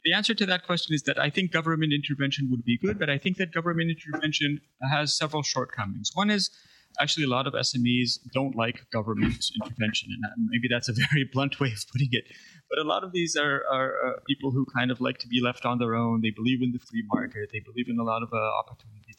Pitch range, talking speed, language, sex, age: 115-145 Hz, 240 wpm, English, male, 30-49